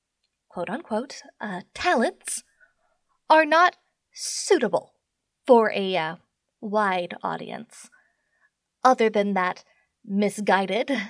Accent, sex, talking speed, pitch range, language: American, female, 75 wpm, 205-310 Hz, English